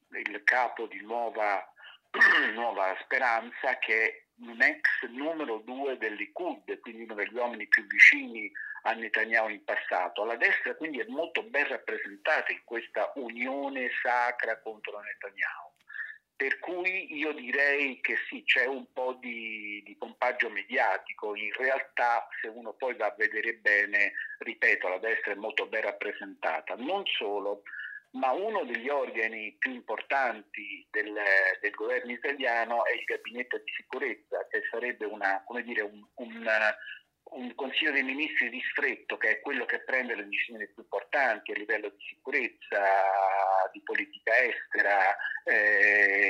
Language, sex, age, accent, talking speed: Italian, male, 50-69, native, 145 wpm